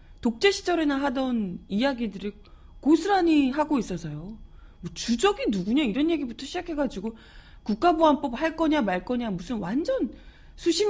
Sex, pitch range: female, 175-275 Hz